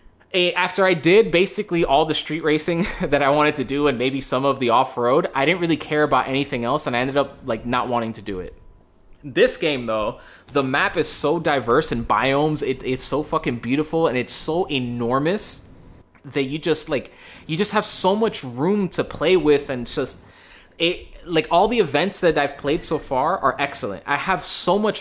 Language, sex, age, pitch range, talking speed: English, male, 20-39, 130-175 Hz, 205 wpm